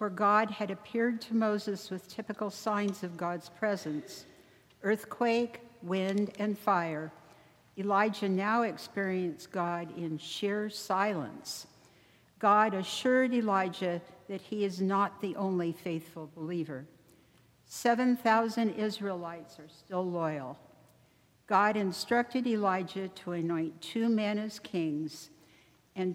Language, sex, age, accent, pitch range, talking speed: English, female, 60-79, American, 170-210 Hz, 110 wpm